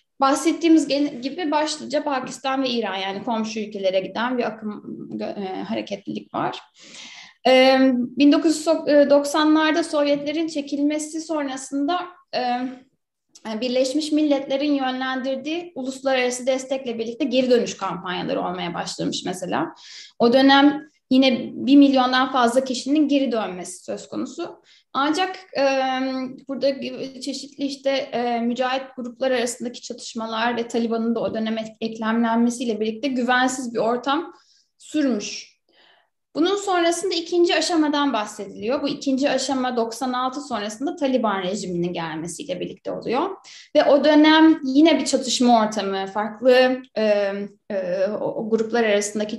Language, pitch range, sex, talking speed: Turkish, 230-285 Hz, female, 110 wpm